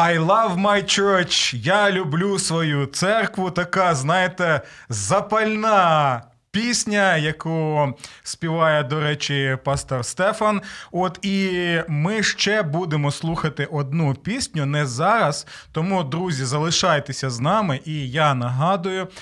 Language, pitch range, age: Ukrainian, 140-185 Hz, 20-39